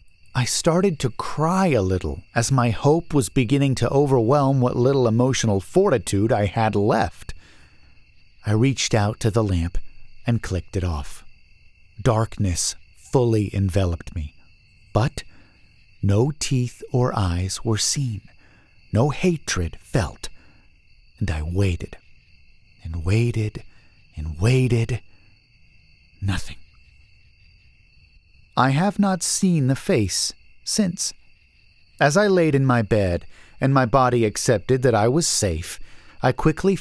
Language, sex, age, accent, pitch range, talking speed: English, male, 50-69, American, 95-135 Hz, 120 wpm